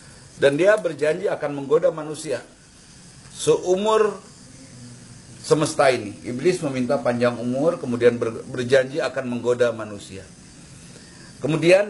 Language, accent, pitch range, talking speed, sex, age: Indonesian, native, 130-170 Hz, 95 wpm, male, 40-59